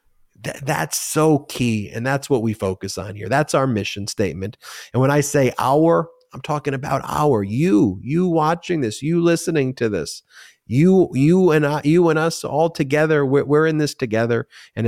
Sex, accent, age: male, American, 30-49